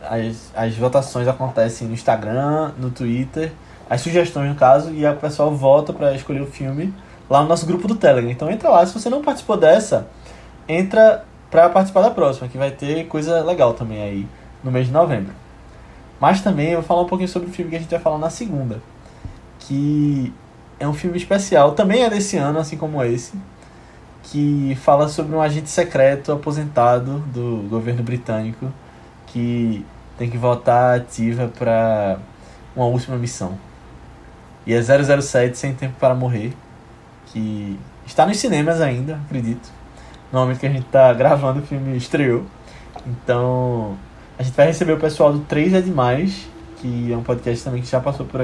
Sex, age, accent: male, 20-39, Brazilian